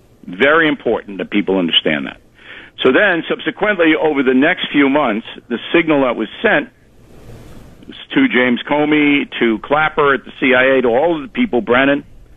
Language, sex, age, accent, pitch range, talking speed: English, male, 60-79, American, 120-165 Hz, 165 wpm